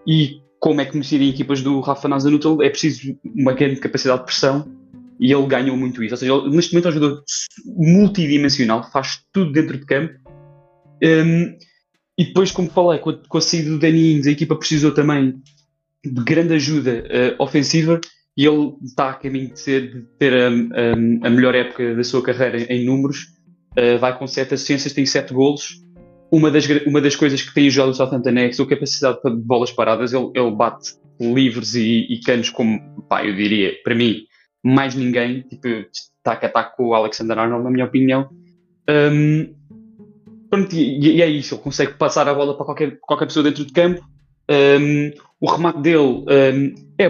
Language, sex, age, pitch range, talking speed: Portuguese, male, 20-39, 125-160 Hz, 195 wpm